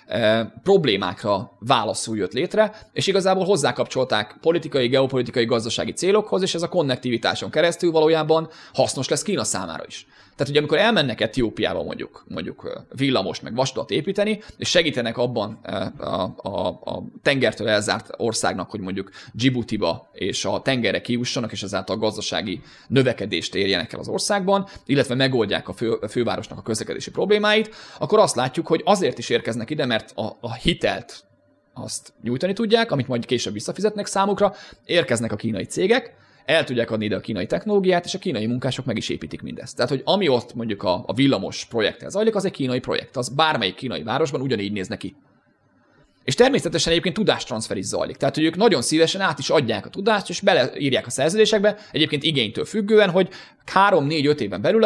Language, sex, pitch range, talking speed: Hungarian, male, 120-190 Hz, 170 wpm